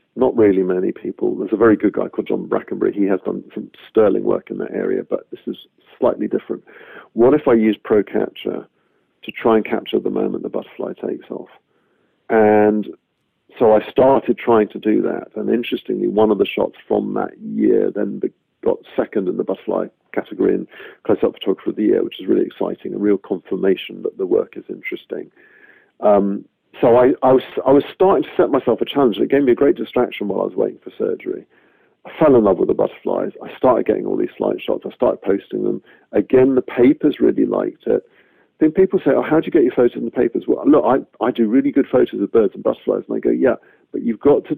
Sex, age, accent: male, 50-69, British